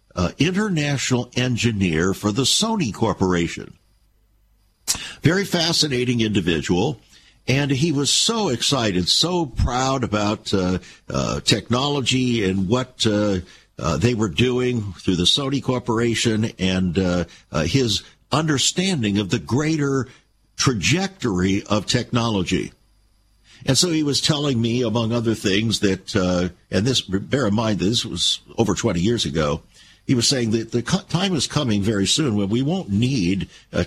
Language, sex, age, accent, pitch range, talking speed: English, male, 60-79, American, 100-140 Hz, 140 wpm